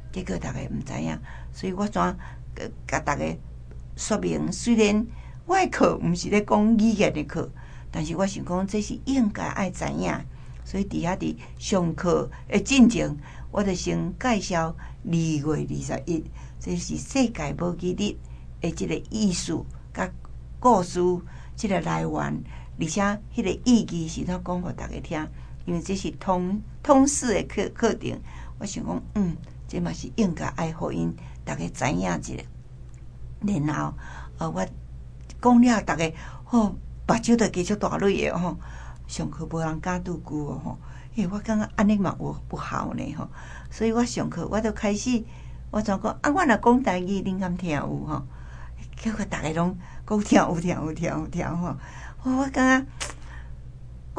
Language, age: Chinese, 60-79